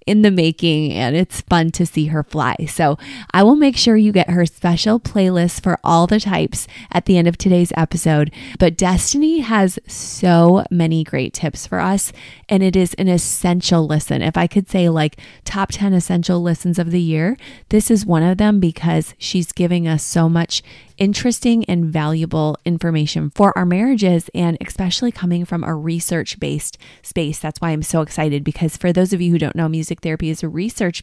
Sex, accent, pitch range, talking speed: female, American, 165-195 Hz, 195 wpm